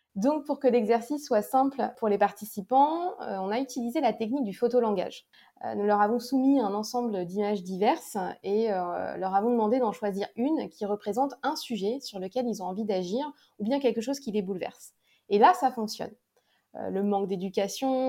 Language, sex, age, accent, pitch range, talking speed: French, female, 20-39, French, 205-255 Hz, 185 wpm